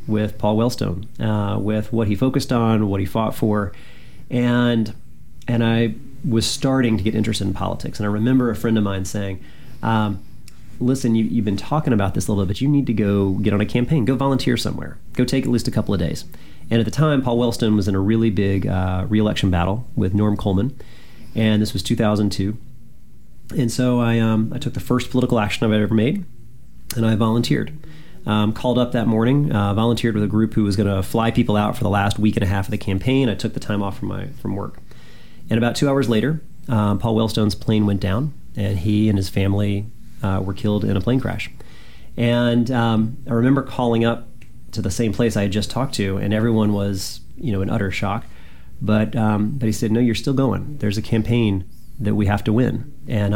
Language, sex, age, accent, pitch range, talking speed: English, male, 30-49, American, 100-120 Hz, 225 wpm